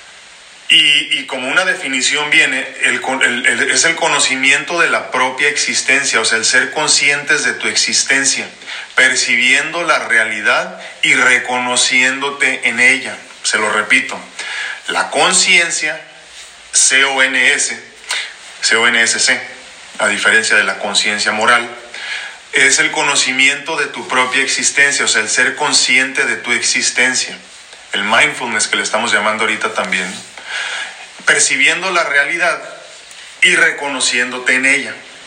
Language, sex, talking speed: Spanish, male, 125 wpm